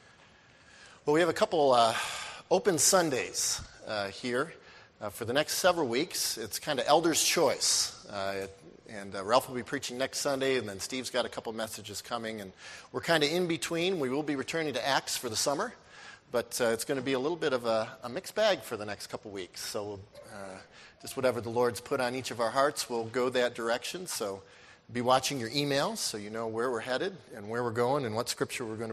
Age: 40-59